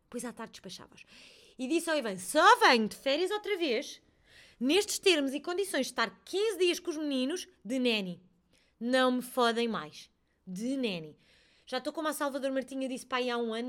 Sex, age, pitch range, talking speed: female, 20-39, 195-265 Hz, 195 wpm